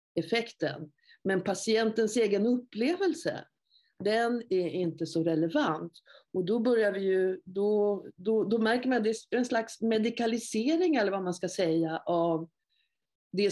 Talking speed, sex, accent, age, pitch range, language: 145 wpm, female, native, 50-69, 175-235 Hz, Swedish